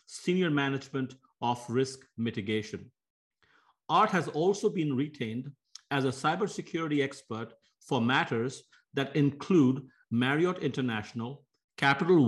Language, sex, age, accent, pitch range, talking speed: English, male, 50-69, Indian, 125-155 Hz, 105 wpm